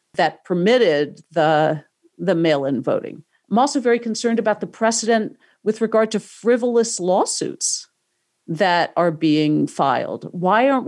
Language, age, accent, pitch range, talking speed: English, 50-69, American, 165-215 Hz, 130 wpm